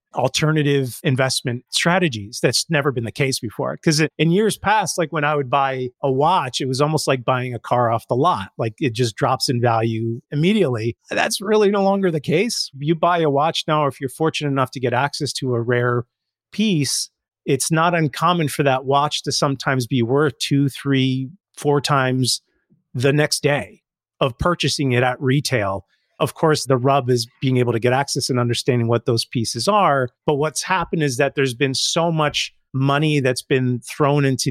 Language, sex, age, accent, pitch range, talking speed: English, male, 30-49, American, 125-155 Hz, 195 wpm